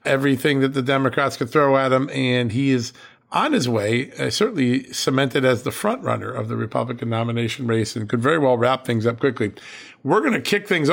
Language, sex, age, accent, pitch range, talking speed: English, male, 50-69, American, 115-140 Hz, 215 wpm